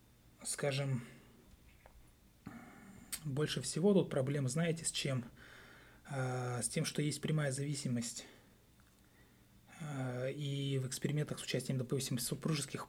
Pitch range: 125-150 Hz